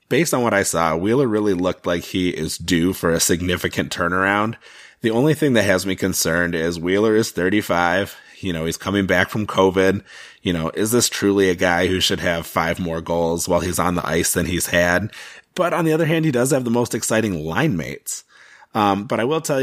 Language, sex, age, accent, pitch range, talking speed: English, male, 30-49, American, 85-105 Hz, 225 wpm